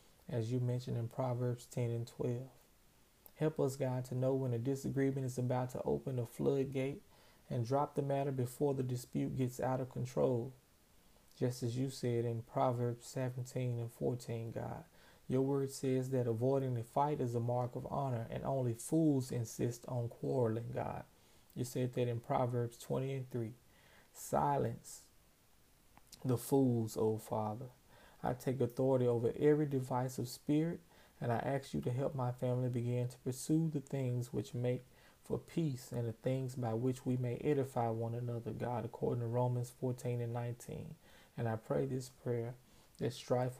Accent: American